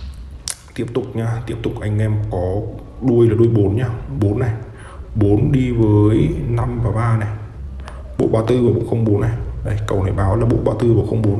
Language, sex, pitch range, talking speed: Vietnamese, male, 95-115 Hz, 205 wpm